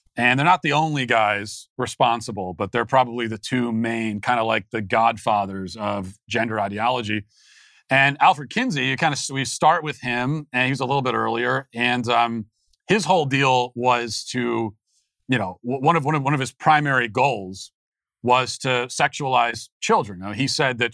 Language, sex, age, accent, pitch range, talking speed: English, male, 40-59, American, 110-130 Hz, 190 wpm